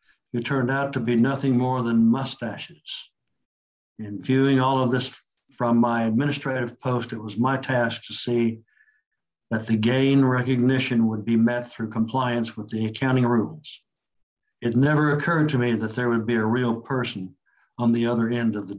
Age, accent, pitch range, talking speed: 60-79, American, 115-135 Hz, 175 wpm